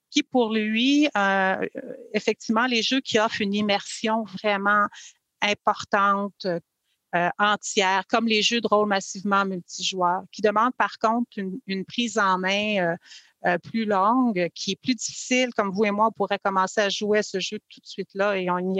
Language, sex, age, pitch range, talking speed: French, female, 40-59, 190-225 Hz, 175 wpm